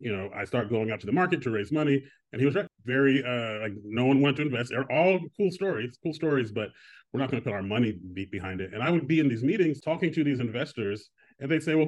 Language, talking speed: English, 280 wpm